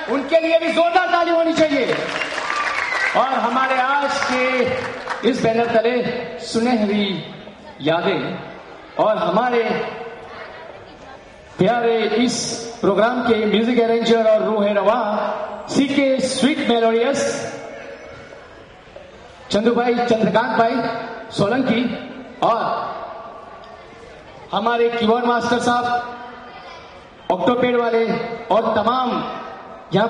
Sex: male